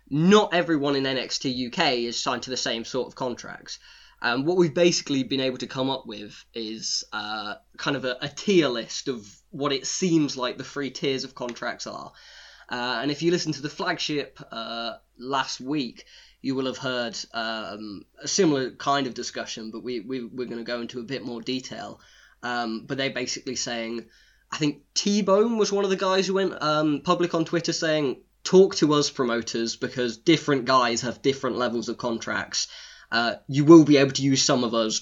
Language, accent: English, British